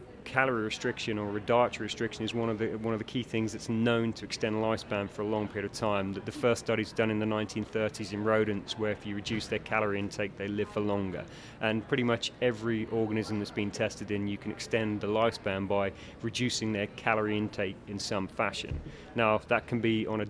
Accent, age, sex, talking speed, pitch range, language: British, 30-49, male, 220 wpm, 105-115 Hz, English